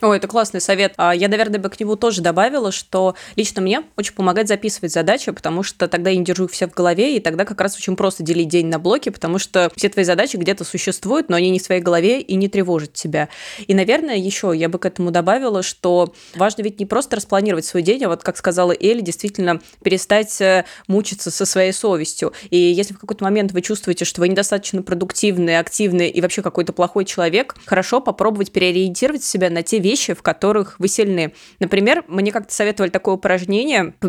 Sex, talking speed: female, 205 wpm